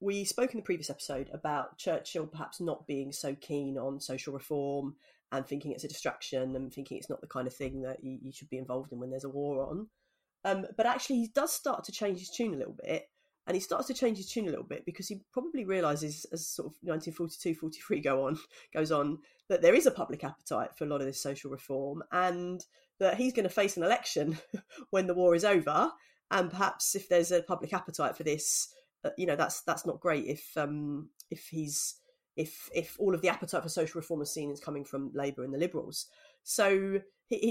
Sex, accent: female, British